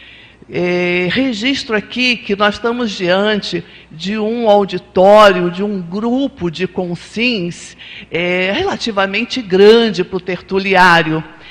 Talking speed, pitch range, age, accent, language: 100 wpm, 185-240 Hz, 60-79, Brazilian, Portuguese